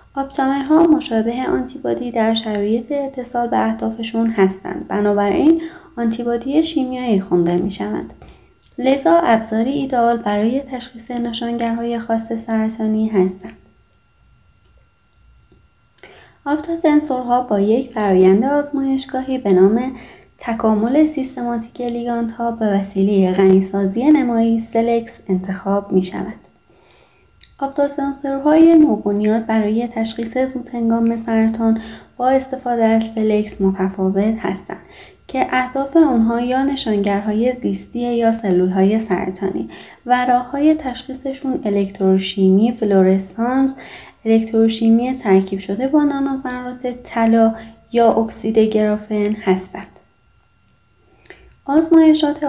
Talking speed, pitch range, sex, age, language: 95 wpm, 210-260 Hz, female, 30-49, Persian